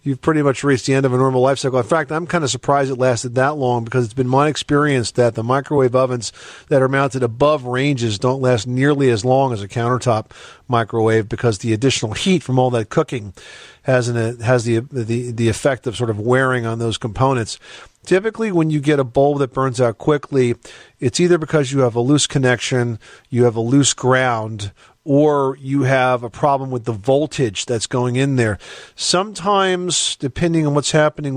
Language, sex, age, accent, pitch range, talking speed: English, male, 40-59, American, 120-140 Hz, 205 wpm